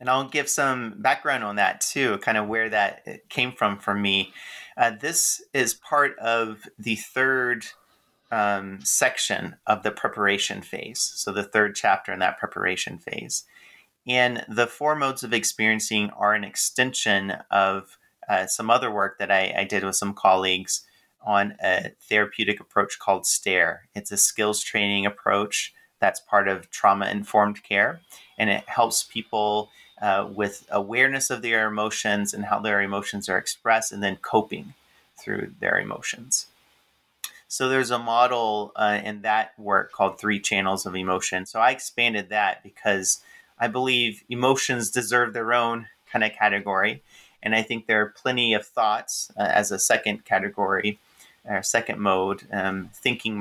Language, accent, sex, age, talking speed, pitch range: English, American, male, 30-49, 160 wpm, 100-120 Hz